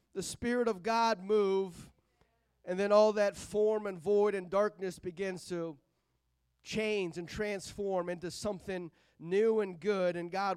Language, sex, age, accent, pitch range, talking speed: English, male, 30-49, American, 195-235 Hz, 150 wpm